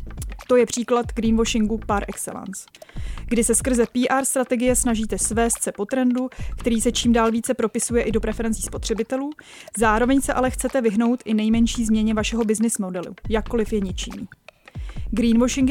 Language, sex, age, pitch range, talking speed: Czech, female, 20-39, 220-250 Hz, 155 wpm